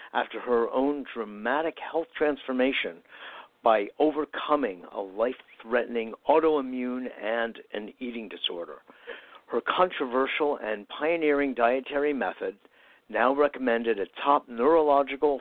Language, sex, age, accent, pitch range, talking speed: English, male, 60-79, American, 115-145 Hz, 100 wpm